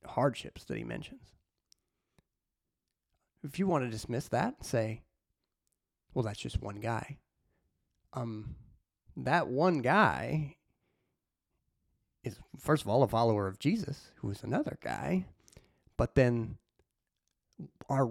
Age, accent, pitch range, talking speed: 30-49, American, 100-150 Hz, 120 wpm